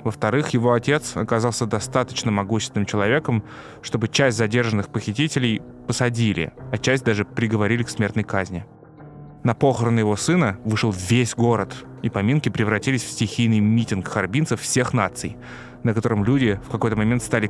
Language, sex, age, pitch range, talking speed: Russian, male, 20-39, 105-130 Hz, 145 wpm